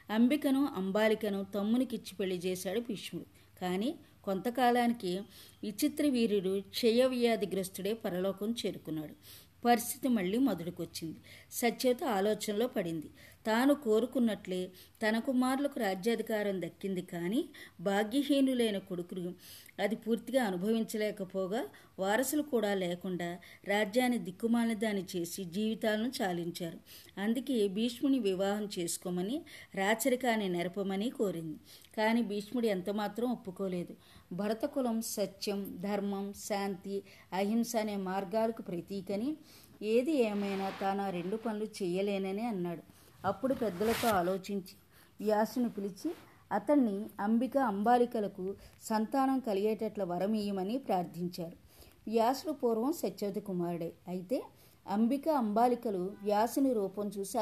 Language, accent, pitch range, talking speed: Telugu, native, 190-235 Hz, 90 wpm